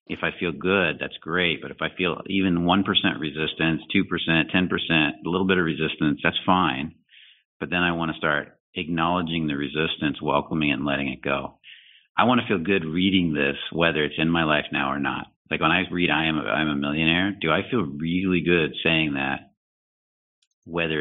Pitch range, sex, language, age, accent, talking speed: 75-90 Hz, male, English, 50-69, American, 200 wpm